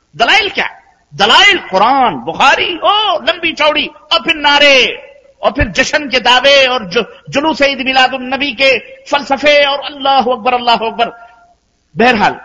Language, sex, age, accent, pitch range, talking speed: Hindi, male, 50-69, native, 190-265 Hz, 140 wpm